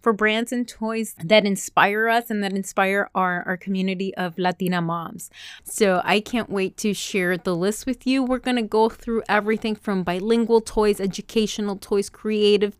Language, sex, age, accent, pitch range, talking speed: English, female, 30-49, American, 195-240 Hz, 175 wpm